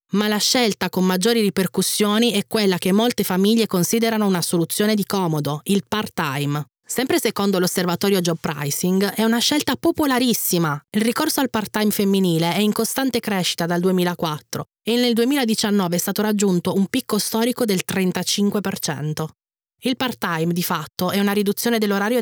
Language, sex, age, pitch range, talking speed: Italian, female, 20-39, 175-215 Hz, 155 wpm